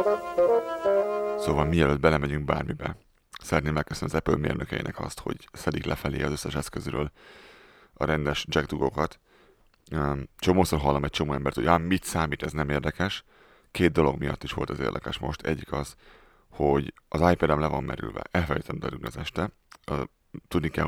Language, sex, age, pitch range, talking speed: Hungarian, male, 30-49, 75-90 Hz, 150 wpm